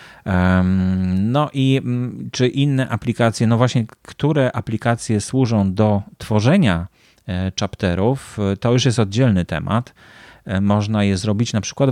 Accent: native